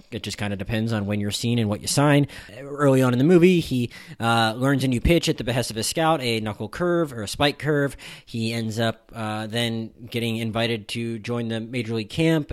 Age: 20-39